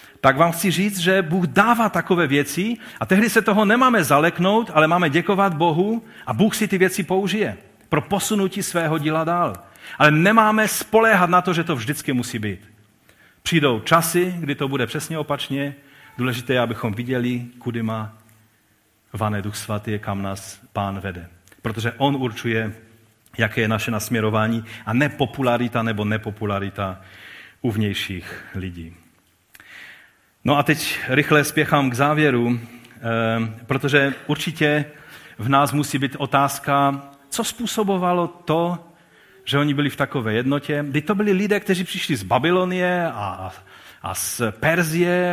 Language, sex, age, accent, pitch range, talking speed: Czech, male, 40-59, native, 115-175 Hz, 145 wpm